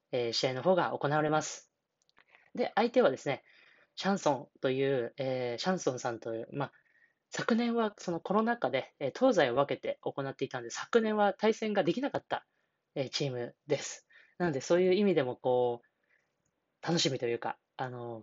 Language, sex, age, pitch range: Japanese, female, 20-39, 130-215 Hz